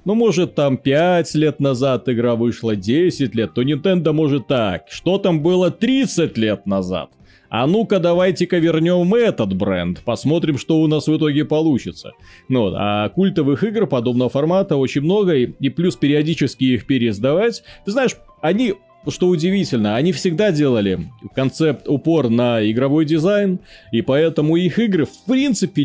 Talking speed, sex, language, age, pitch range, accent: 155 wpm, male, Russian, 30-49, 125-185 Hz, native